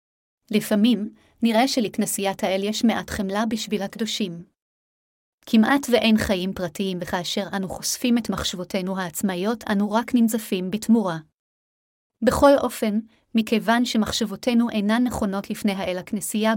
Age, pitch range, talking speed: 30-49, 195-225 Hz, 115 wpm